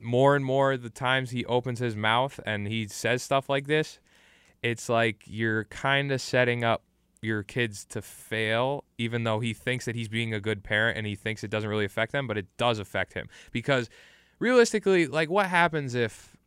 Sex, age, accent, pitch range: male, 20-39, American, 105-125 Hz